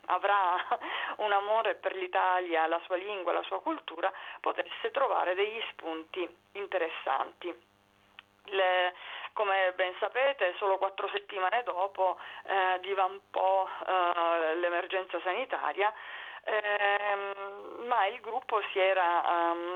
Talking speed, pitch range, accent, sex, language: 110 wpm, 170-195 Hz, native, female, Italian